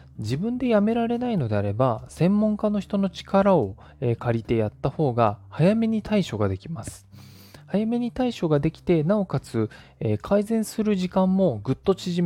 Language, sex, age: Japanese, male, 20-39